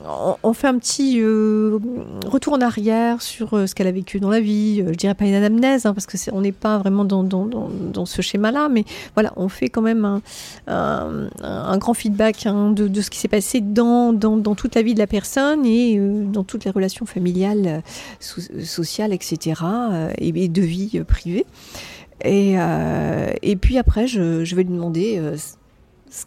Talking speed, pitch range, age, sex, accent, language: 205 wpm, 170-225 Hz, 40-59, female, French, French